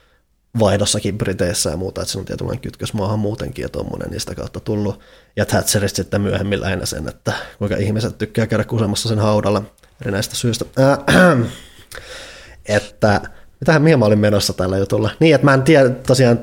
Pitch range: 95-115 Hz